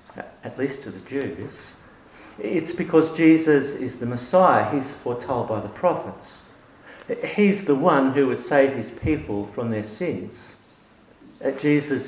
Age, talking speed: 50-69, 140 wpm